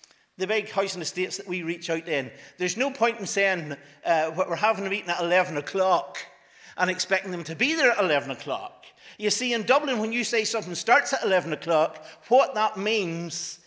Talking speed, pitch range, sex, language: 205 wpm, 165-200 Hz, male, English